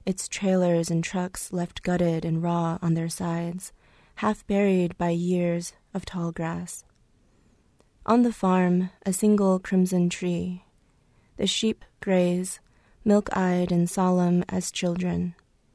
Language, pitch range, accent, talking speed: English, 175-195 Hz, American, 125 wpm